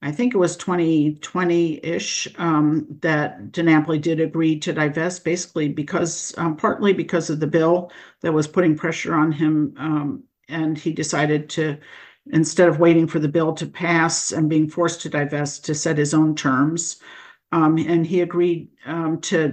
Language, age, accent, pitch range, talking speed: English, 50-69, American, 155-175 Hz, 165 wpm